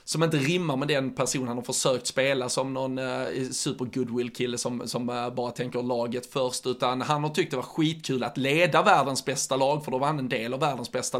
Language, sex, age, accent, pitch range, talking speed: Swedish, male, 20-39, native, 125-160 Hz, 230 wpm